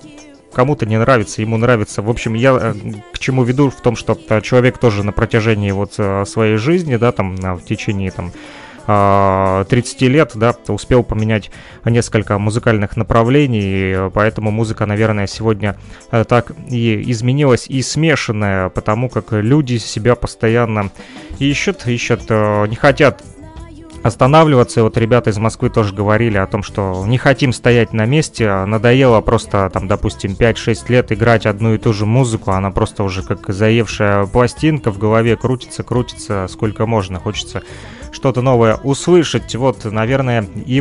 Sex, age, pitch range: male, 20-39, 105-125 Hz